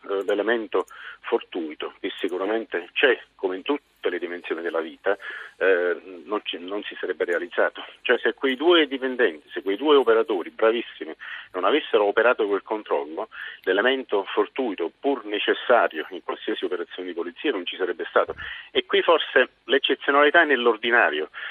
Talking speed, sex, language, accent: 150 wpm, male, Italian, native